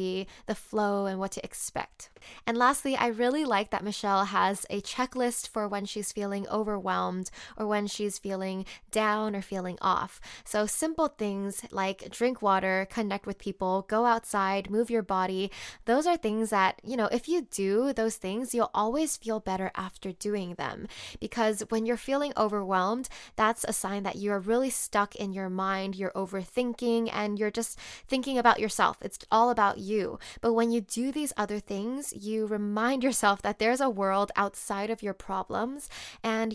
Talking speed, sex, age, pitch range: 175 wpm, female, 10-29, 200-235 Hz